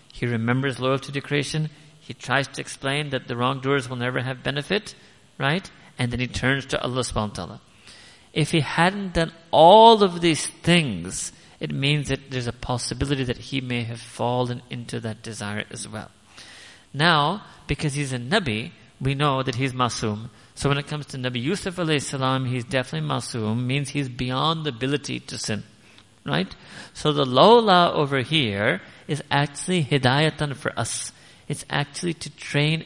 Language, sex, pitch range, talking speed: English, male, 125-155 Hz, 170 wpm